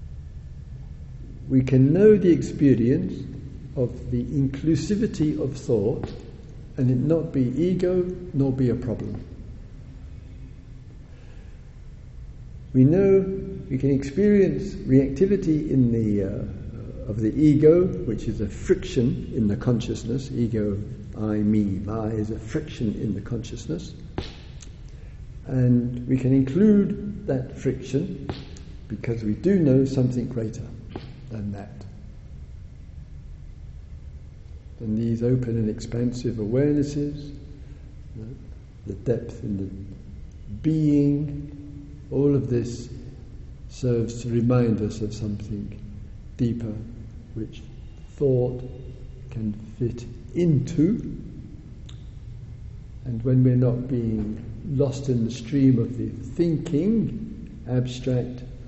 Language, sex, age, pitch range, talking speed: English, male, 60-79, 105-135 Hz, 105 wpm